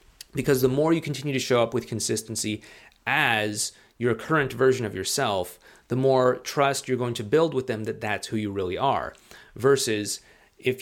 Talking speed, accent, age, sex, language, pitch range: 185 wpm, American, 30-49, male, English, 105-130 Hz